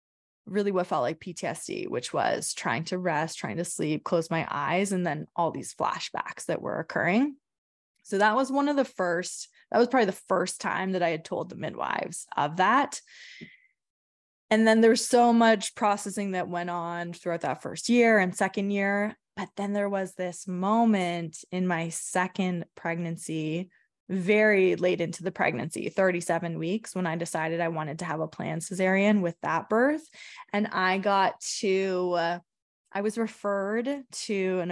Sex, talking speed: female, 175 wpm